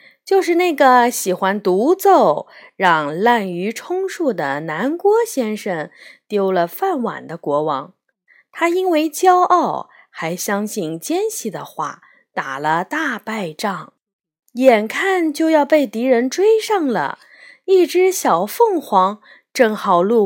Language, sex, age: Chinese, female, 20-39